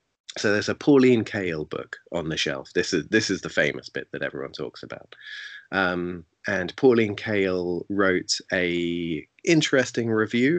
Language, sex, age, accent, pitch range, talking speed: English, male, 30-49, British, 90-120 Hz, 160 wpm